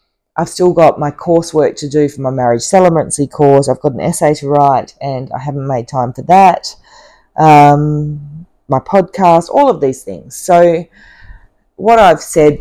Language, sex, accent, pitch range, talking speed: English, female, Australian, 130-160 Hz, 170 wpm